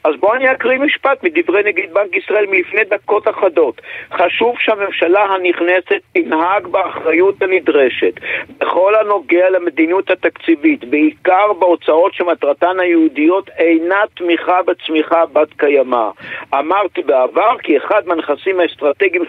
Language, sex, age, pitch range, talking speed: Hebrew, male, 50-69, 160-230 Hz, 115 wpm